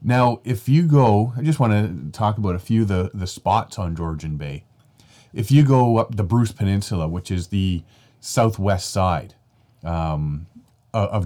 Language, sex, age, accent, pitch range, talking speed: English, male, 30-49, American, 95-120 Hz, 175 wpm